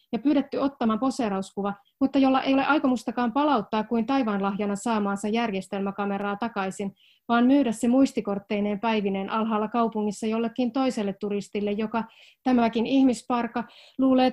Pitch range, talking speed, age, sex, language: 200-250 Hz, 120 wpm, 30-49, female, Finnish